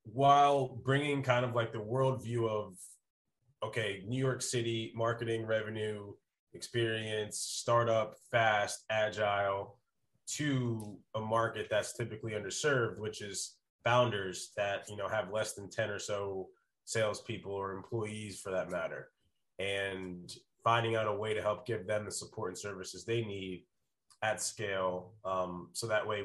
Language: English